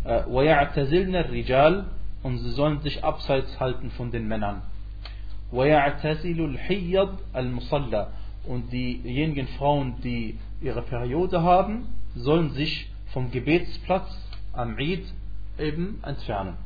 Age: 40-59